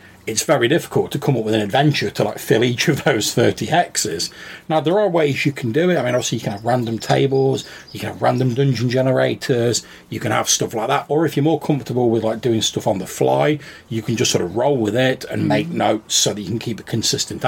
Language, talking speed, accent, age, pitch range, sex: English, 260 wpm, British, 40-59, 110-145 Hz, male